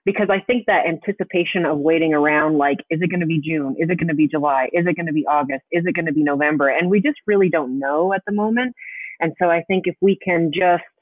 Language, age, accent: English, 30-49, American